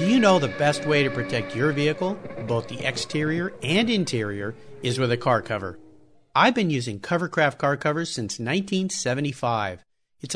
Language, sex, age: English, male, 50-69